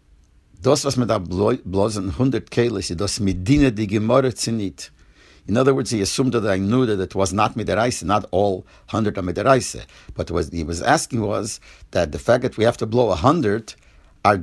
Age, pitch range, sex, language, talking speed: 50-69, 95-115 Hz, male, English, 135 wpm